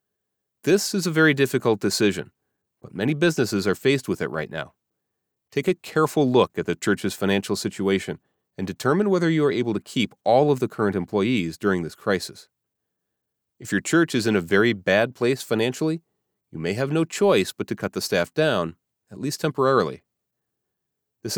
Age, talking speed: 30-49, 180 wpm